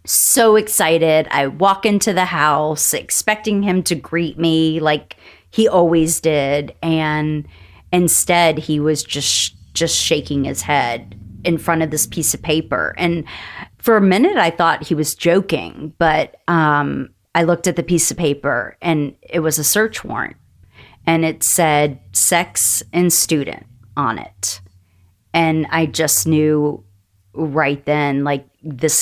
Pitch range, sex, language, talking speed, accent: 140-170 Hz, female, English, 150 wpm, American